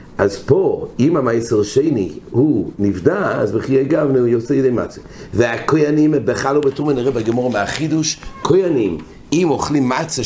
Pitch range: 100-135 Hz